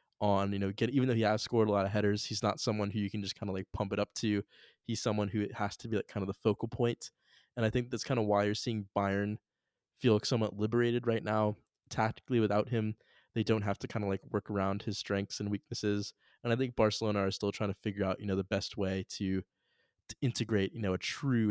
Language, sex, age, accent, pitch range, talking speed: English, male, 20-39, American, 100-115 Hz, 260 wpm